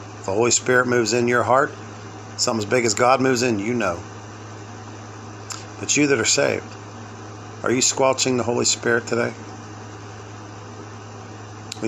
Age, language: 50-69, English